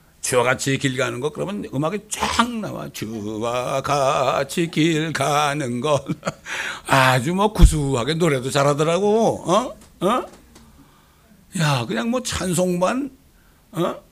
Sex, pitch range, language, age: male, 135-190 Hz, Korean, 60-79